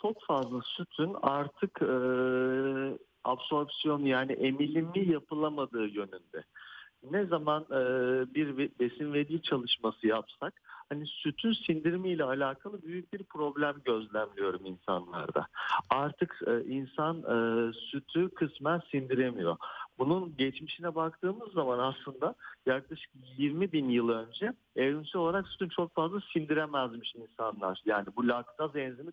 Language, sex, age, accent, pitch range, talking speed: Turkish, male, 50-69, native, 130-180 Hz, 105 wpm